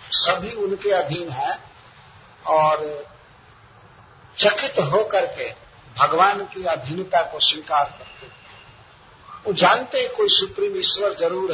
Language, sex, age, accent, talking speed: Hindi, male, 50-69, native, 110 wpm